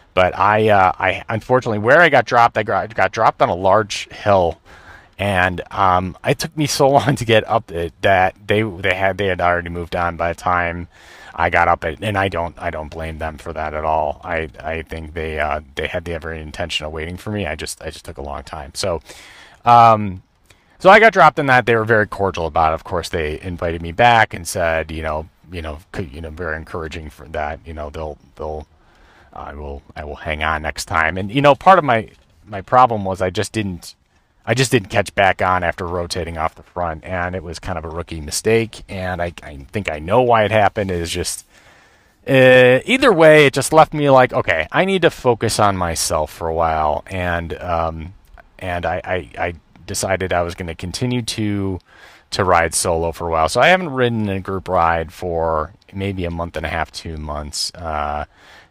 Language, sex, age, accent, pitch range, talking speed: English, male, 30-49, American, 80-105 Hz, 220 wpm